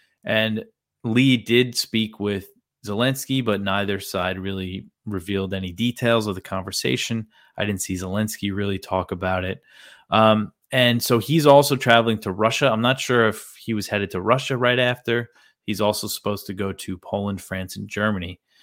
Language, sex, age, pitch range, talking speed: English, male, 20-39, 100-130 Hz, 170 wpm